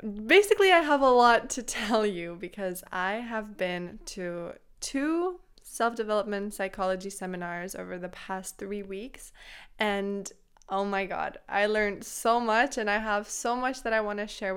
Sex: female